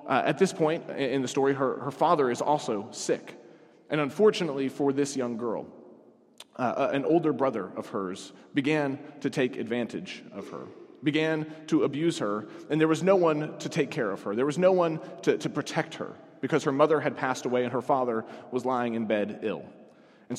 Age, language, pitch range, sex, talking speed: 30-49, English, 125-155 Hz, male, 200 wpm